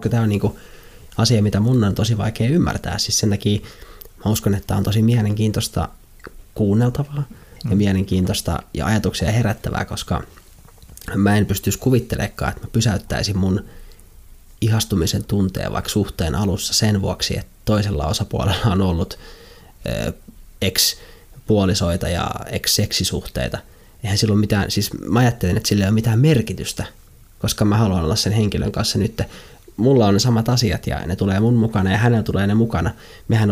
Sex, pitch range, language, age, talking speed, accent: male, 95-110 Hz, Finnish, 20-39, 150 wpm, native